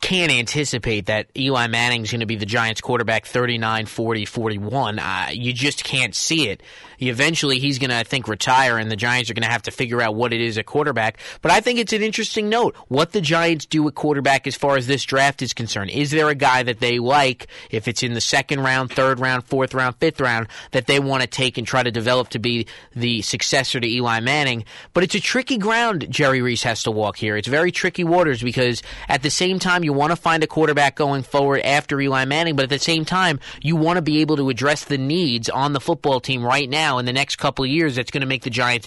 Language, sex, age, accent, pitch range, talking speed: English, male, 30-49, American, 125-155 Hz, 245 wpm